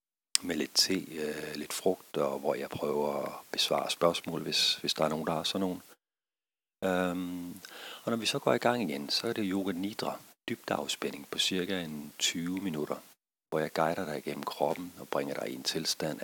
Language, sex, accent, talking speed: Danish, male, native, 205 wpm